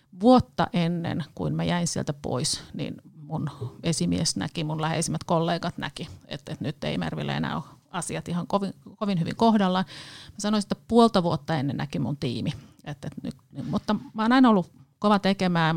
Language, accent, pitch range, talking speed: Finnish, native, 145-180 Hz, 175 wpm